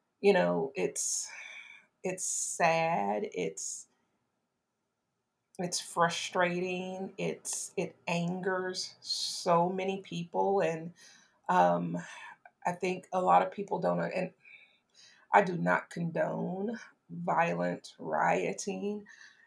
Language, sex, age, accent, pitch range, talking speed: English, female, 40-59, American, 170-200 Hz, 90 wpm